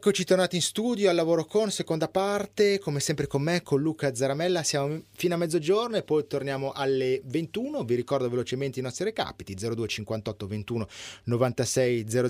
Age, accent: 30-49, native